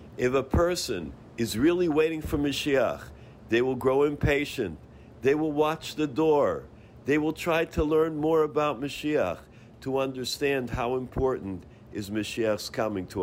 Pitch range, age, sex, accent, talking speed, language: 110-140 Hz, 50-69, male, American, 150 wpm, English